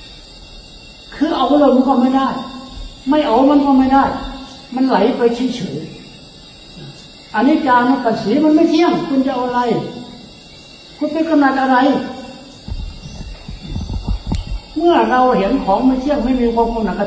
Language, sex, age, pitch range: Thai, male, 60-79, 195-260 Hz